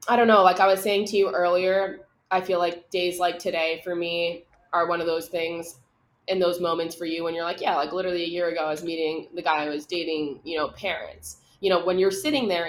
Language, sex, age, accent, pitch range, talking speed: English, female, 20-39, American, 170-200 Hz, 255 wpm